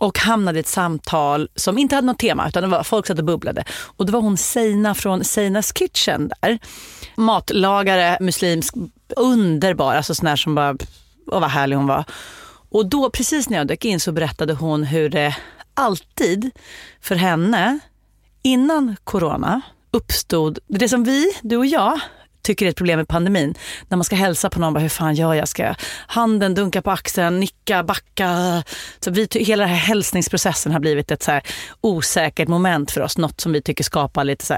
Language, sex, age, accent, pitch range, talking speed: English, female, 30-49, Swedish, 155-210 Hz, 190 wpm